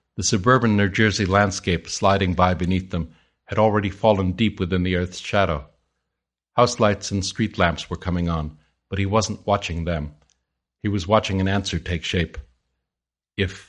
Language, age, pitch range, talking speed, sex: English, 50-69, 80-110 Hz, 165 wpm, male